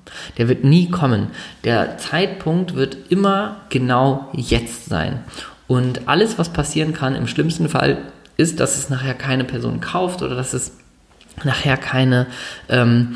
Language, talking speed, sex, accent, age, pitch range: German, 145 wpm, male, German, 20-39, 115-145 Hz